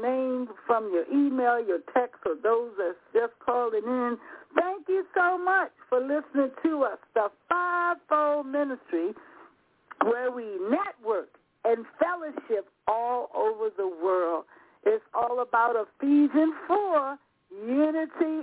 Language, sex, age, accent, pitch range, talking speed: English, female, 60-79, American, 235-345 Hz, 120 wpm